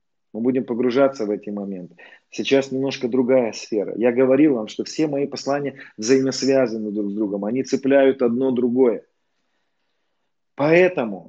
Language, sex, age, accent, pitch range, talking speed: Russian, male, 30-49, native, 115-140 Hz, 140 wpm